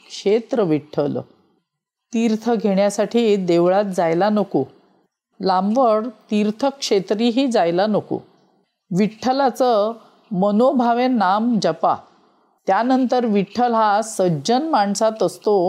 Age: 50-69